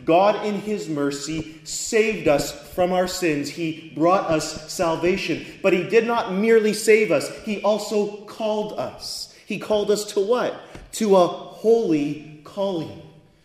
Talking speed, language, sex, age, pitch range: 145 wpm, English, male, 30-49, 150-210 Hz